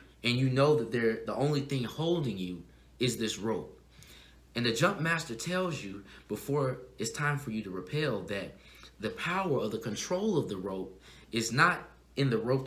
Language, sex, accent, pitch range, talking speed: English, male, American, 100-140 Hz, 190 wpm